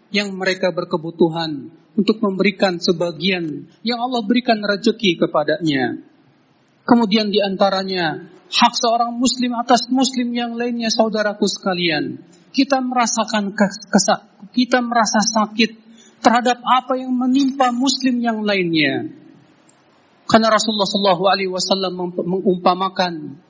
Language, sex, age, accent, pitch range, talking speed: Indonesian, male, 40-59, native, 195-255 Hz, 105 wpm